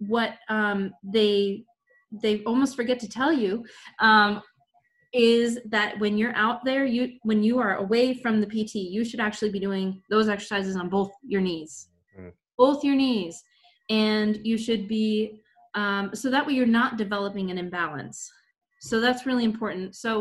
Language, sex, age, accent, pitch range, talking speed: English, female, 20-39, American, 185-230 Hz, 165 wpm